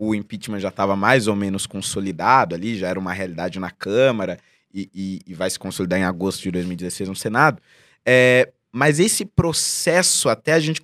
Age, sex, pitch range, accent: 20-39, male, 105-165 Hz, Brazilian